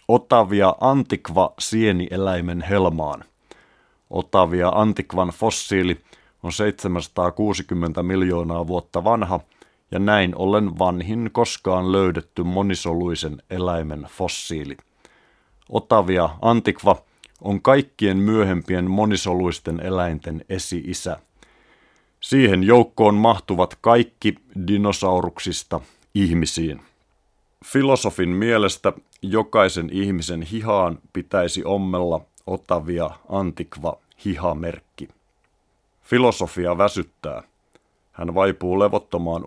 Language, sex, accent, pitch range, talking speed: Finnish, male, native, 85-100 Hz, 75 wpm